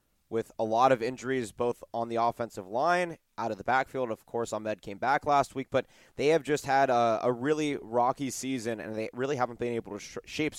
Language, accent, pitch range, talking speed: English, American, 115-150 Hz, 220 wpm